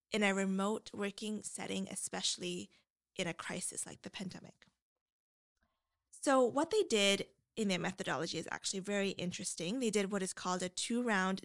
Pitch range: 185-235 Hz